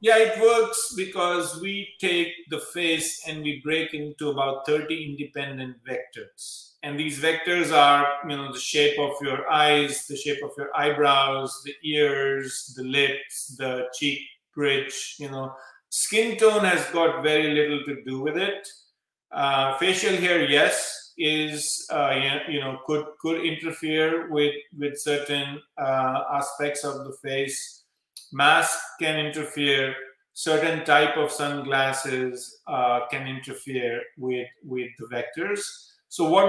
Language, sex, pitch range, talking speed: English, male, 135-160 Hz, 140 wpm